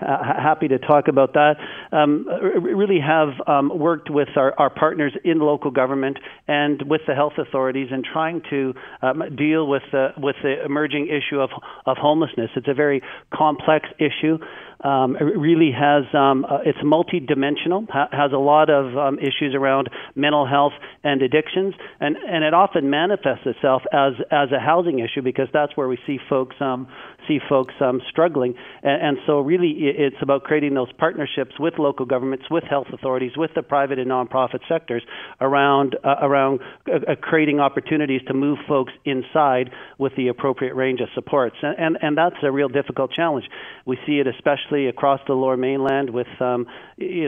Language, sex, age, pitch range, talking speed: English, male, 50-69, 130-150 Hz, 180 wpm